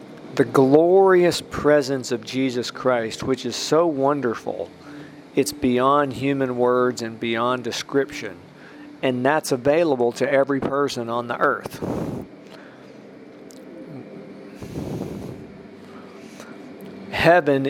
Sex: male